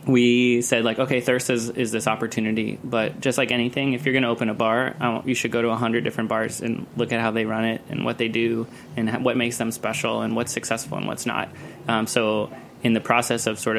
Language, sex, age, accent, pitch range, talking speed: English, male, 20-39, American, 115-130 Hz, 245 wpm